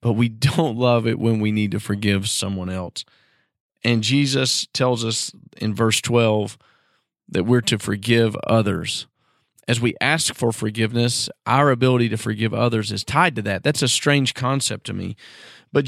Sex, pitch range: male, 115-145 Hz